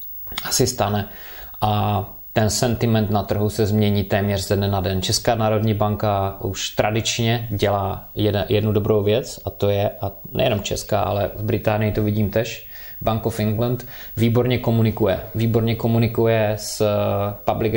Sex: male